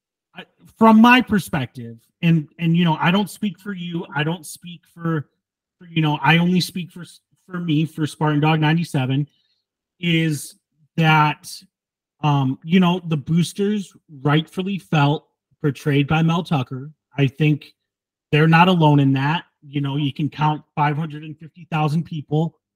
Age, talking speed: 30-49, 150 wpm